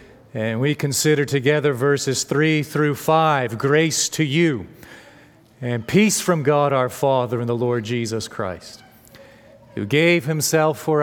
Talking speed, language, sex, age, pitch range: 140 wpm, English, male, 40-59, 115-150 Hz